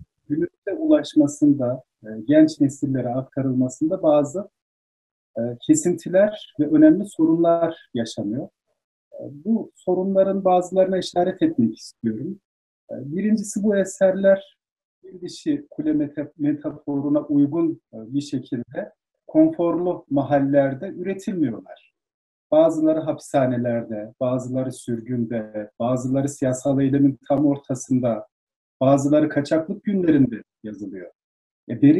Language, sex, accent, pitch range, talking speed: Turkish, male, native, 135-195 Hz, 85 wpm